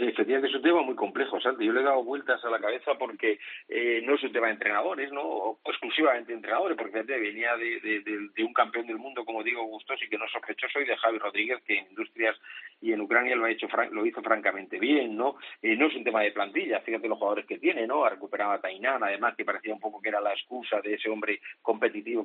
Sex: male